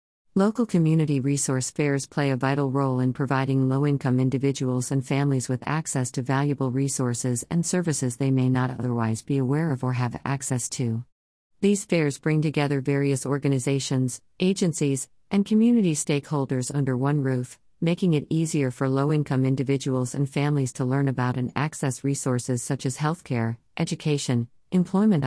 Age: 40-59